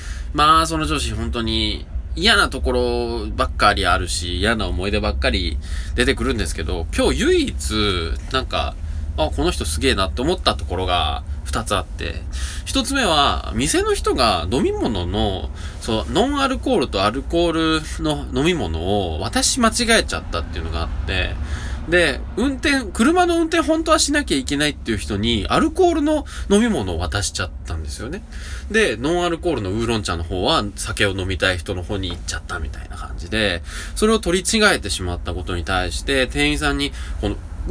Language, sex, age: Japanese, male, 20-39